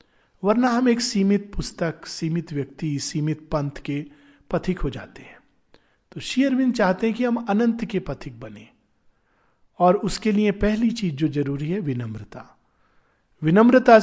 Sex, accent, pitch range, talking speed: male, native, 150-215 Hz, 145 wpm